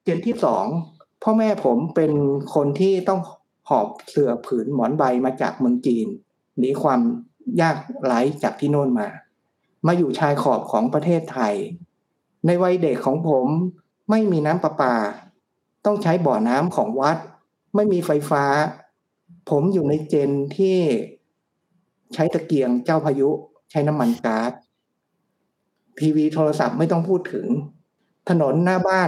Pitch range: 145-190 Hz